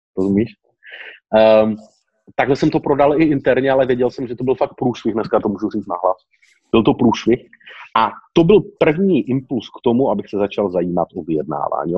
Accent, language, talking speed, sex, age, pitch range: native, Czech, 185 wpm, male, 30-49, 115-145 Hz